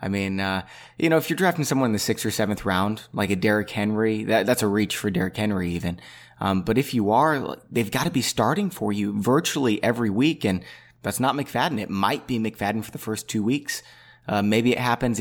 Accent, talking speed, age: American, 235 wpm, 20-39